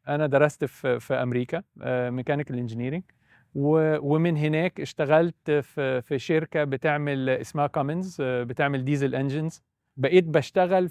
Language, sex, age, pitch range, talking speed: Arabic, male, 40-59, 130-160 Hz, 115 wpm